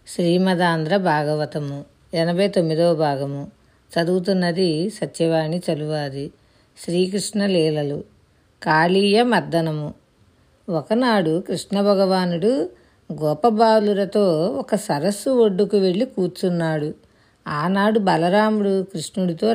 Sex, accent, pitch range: female, native, 170-210 Hz